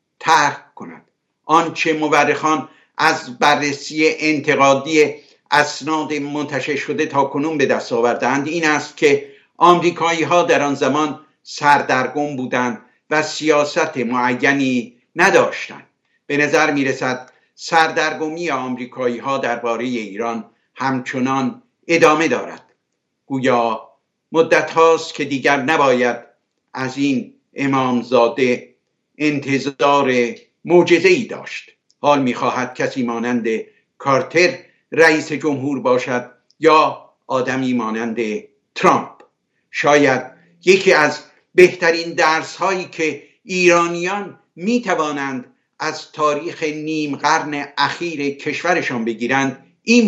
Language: Persian